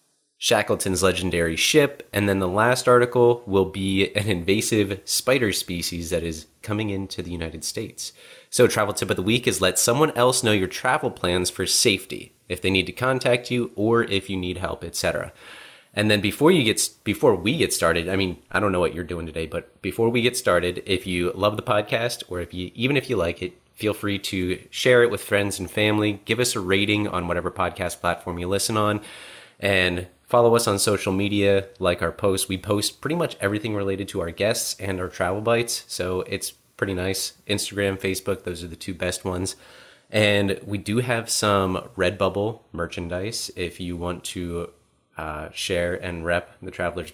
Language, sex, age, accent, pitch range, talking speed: English, male, 30-49, American, 90-110 Hz, 200 wpm